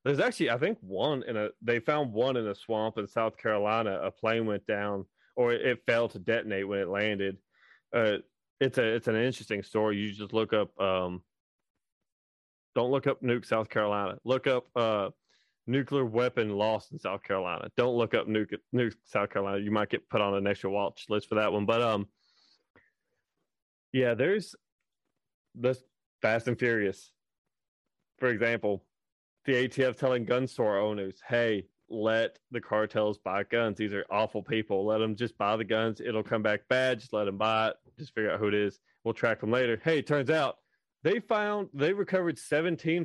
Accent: American